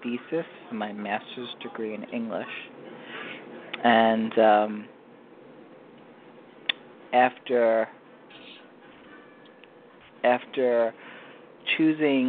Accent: American